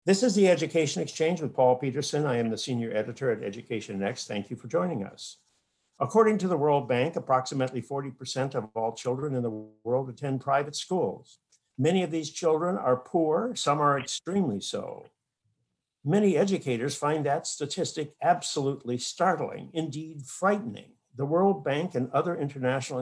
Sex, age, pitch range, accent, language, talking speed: male, 60-79, 125-170 Hz, American, English, 160 wpm